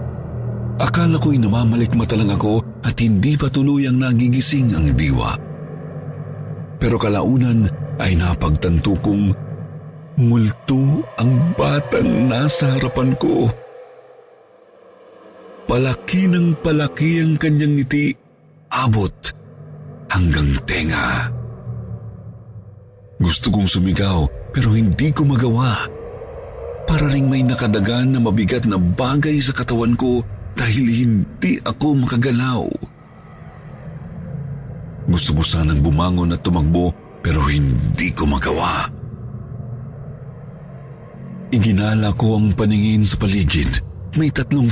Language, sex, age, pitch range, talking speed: Filipino, male, 50-69, 95-140 Hz, 95 wpm